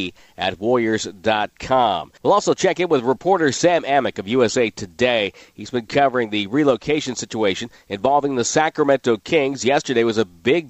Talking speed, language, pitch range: 150 wpm, English, 110-145 Hz